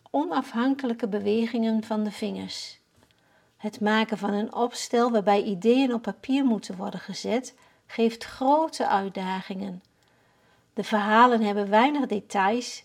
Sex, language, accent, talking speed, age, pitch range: female, Dutch, Dutch, 115 wpm, 50-69, 200-245 Hz